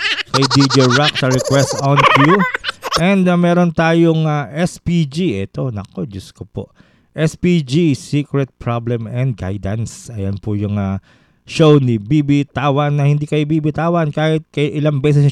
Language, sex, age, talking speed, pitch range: English, male, 20-39, 140 wpm, 115-160 Hz